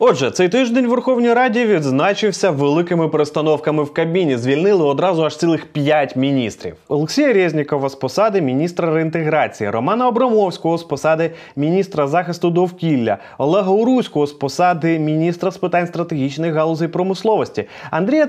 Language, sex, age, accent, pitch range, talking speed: Ukrainian, male, 30-49, native, 155-225 Hz, 135 wpm